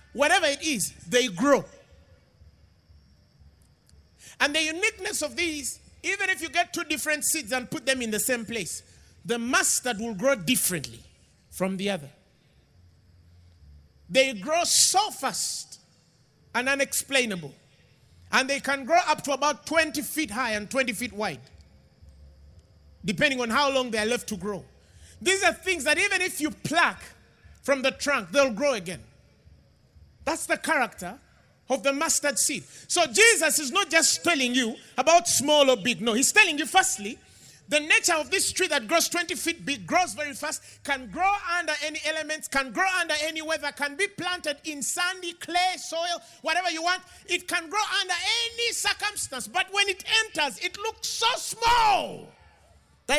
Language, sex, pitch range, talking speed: English, male, 210-345 Hz, 165 wpm